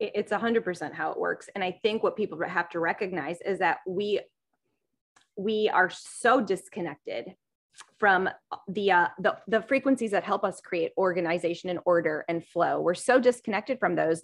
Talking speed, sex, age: 175 wpm, female, 20-39